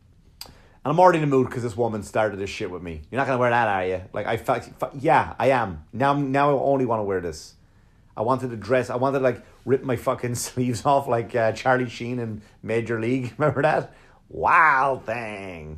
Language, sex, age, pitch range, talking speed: English, male, 30-49, 105-135 Hz, 235 wpm